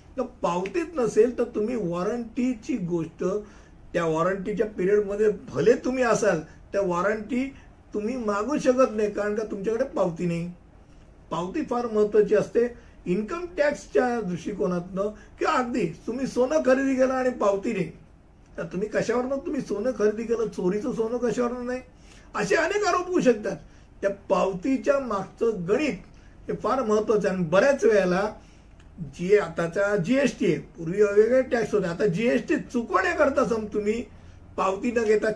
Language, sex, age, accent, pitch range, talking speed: Hindi, male, 50-69, native, 185-245 Hz, 110 wpm